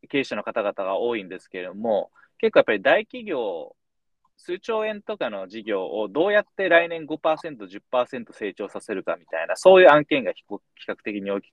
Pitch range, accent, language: 105-170 Hz, native, Japanese